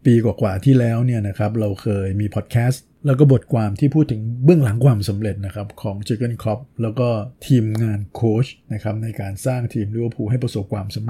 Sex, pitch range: male, 105-130 Hz